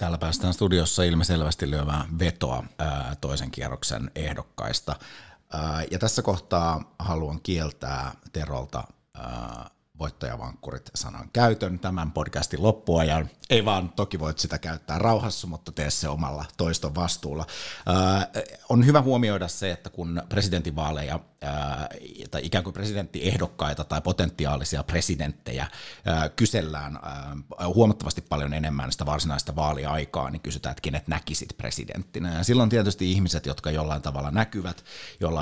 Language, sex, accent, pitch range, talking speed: Finnish, male, native, 75-90 Hz, 125 wpm